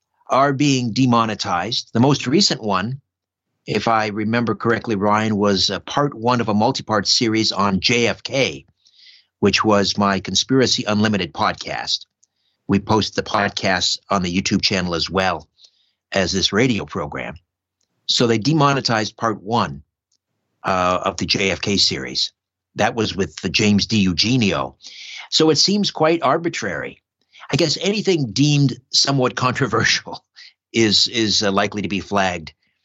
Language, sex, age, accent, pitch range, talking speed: English, male, 60-79, American, 95-125 Hz, 140 wpm